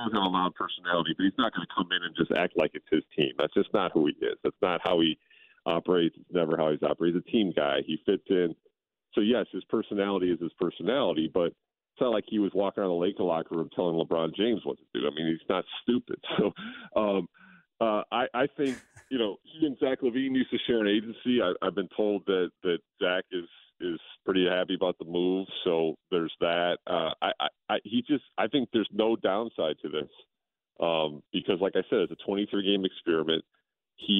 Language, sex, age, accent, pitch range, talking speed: English, male, 40-59, American, 85-115 Hz, 225 wpm